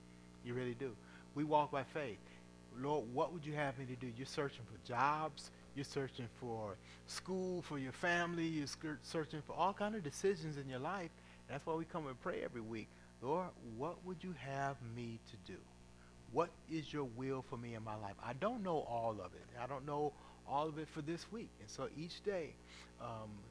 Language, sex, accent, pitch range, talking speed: English, male, American, 105-150 Hz, 205 wpm